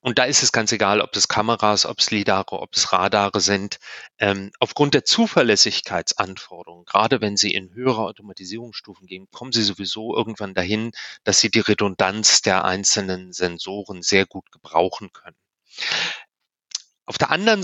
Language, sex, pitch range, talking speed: English, male, 105-135 Hz, 155 wpm